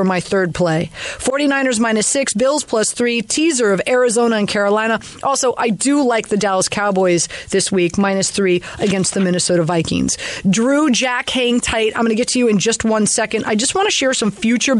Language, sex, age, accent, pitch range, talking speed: English, female, 30-49, American, 195-255 Hz, 205 wpm